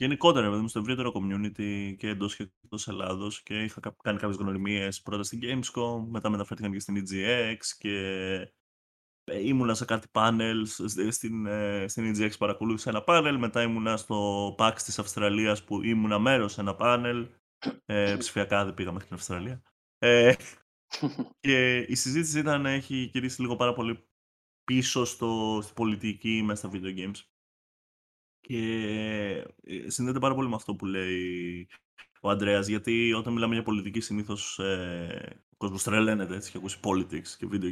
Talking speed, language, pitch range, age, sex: 155 wpm, Greek, 95-120 Hz, 20-39, male